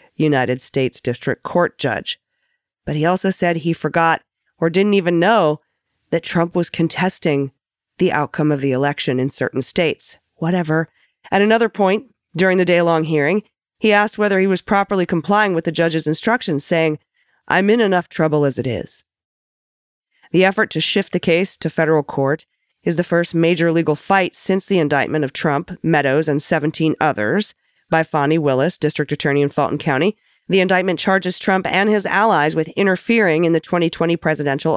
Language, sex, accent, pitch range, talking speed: English, female, American, 150-190 Hz, 175 wpm